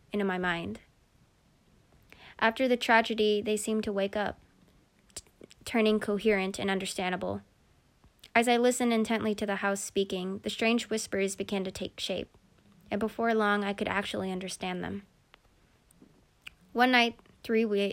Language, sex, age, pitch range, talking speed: English, female, 20-39, 185-220 Hz, 135 wpm